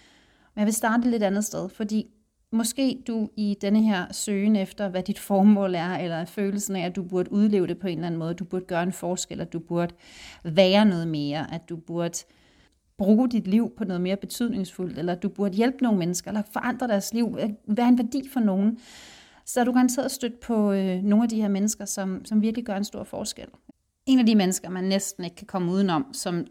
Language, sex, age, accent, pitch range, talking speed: Danish, female, 30-49, native, 180-215 Hz, 225 wpm